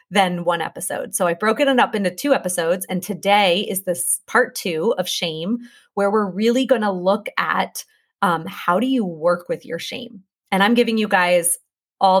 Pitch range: 175-215 Hz